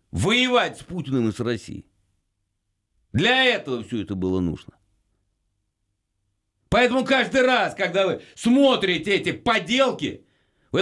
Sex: male